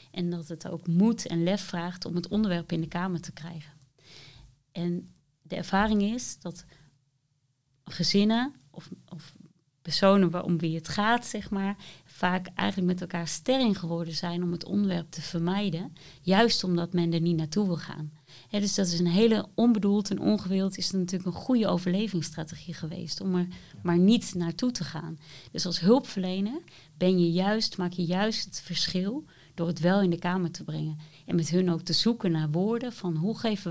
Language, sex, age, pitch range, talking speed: Dutch, female, 30-49, 165-200 Hz, 185 wpm